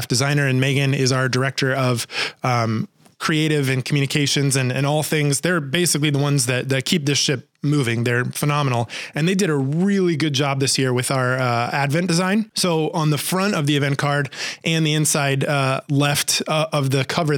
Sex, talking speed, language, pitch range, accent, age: male, 200 wpm, English, 130-155 Hz, American, 20-39